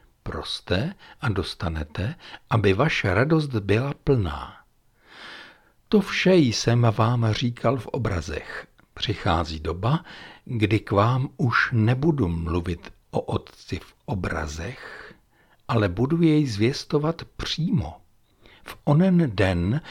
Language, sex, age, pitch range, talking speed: Czech, male, 60-79, 95-130 Hz, 105 wpm